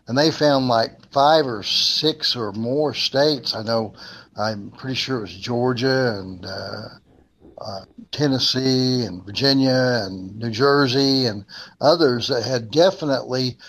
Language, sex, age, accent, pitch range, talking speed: English, male, 60-79, American, 115-140 Hz, 140 wpm